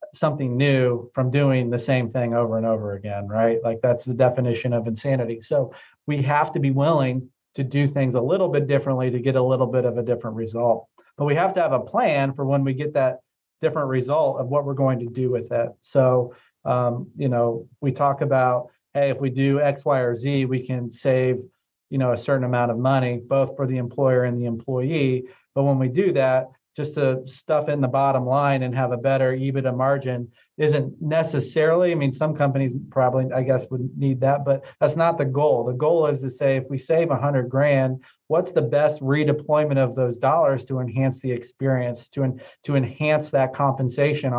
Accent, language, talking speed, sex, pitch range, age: American, English, 210 wpm, male, 125-140 Hz, 40-59